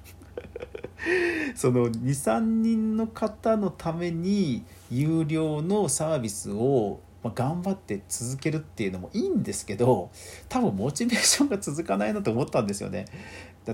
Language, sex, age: Japanese, male, 40-59